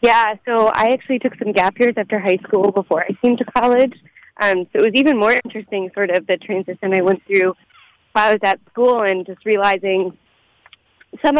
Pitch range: 185-225 Hz